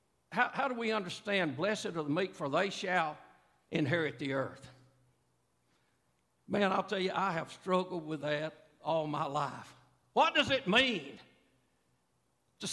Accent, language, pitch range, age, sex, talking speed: American, English, 125-195 Hz, 60-79, male, 150 wpm